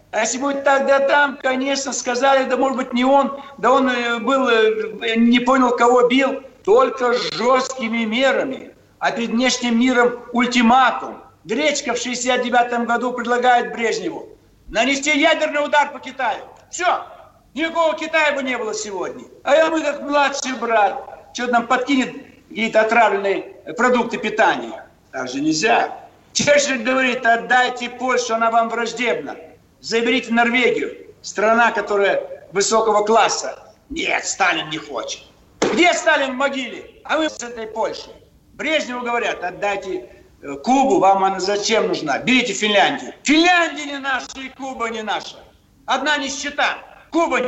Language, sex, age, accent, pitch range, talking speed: Russian, male, 60-79, native, 230-275 Hz, 135 wpm